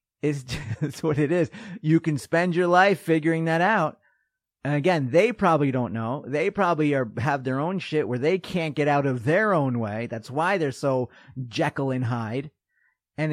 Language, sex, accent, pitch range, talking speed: English, male, American, 130-200 Hz, 190 wpm